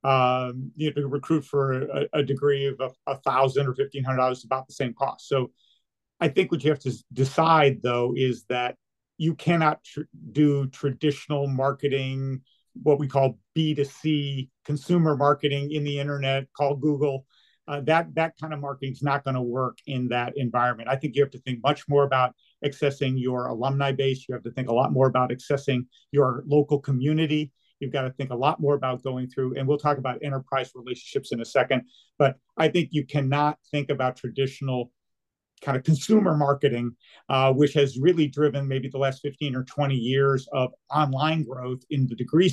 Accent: American